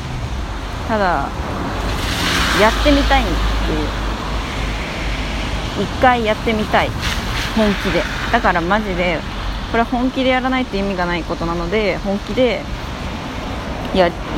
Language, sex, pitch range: Japanese, female, 180-275 Hz